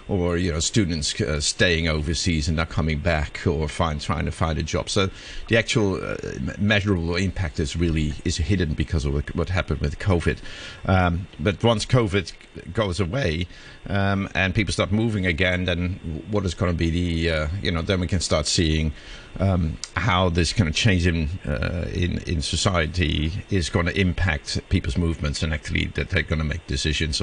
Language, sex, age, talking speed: English, male, 50-69, 190 wpm